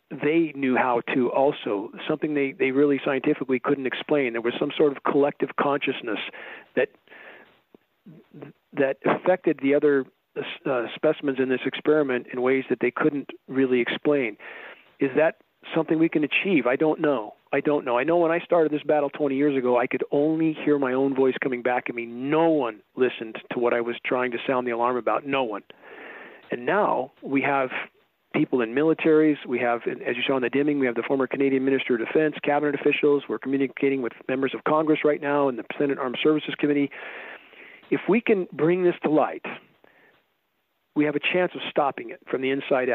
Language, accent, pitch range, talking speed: English, American, 130-150 Hz, 195 wpm